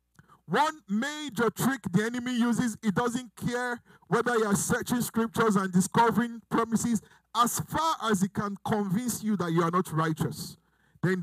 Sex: male